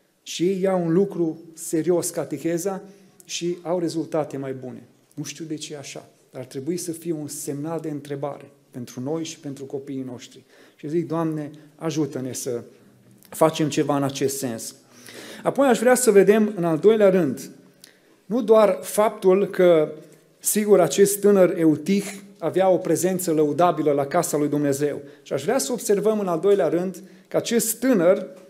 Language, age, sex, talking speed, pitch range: Romanian, 30-49, male, 170 wpm, 150-195 Hz